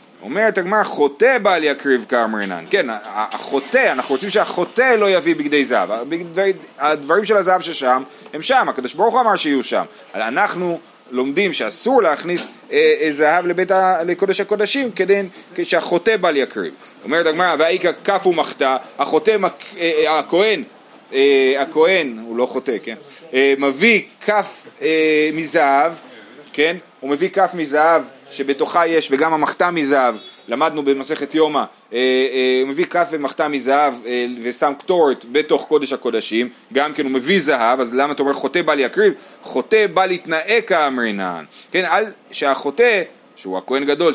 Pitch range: 140-200 Hz